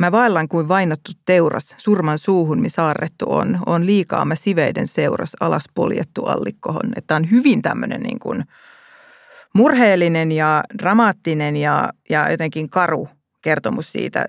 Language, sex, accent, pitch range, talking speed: Finnish, female, native, 160-200 Hz, 135 wpm